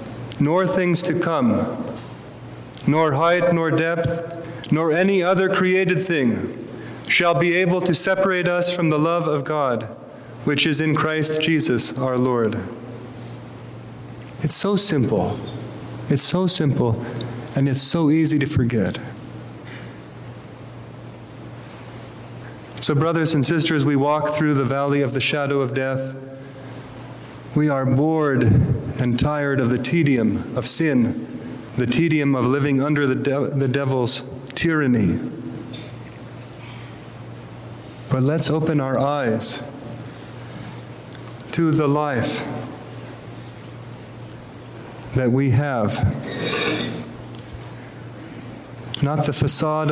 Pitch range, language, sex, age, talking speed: 125-155 Hz, English, male, 30-49, 110 wpm